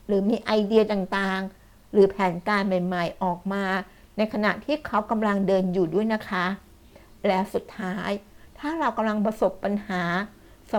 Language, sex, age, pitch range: Thai, female, 60-79, 185-220 Hz